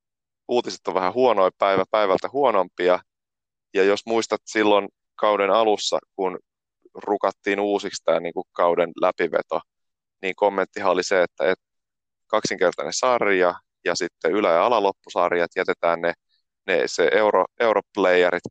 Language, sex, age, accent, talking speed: Finnish, male, 30-49, native, 125 wpm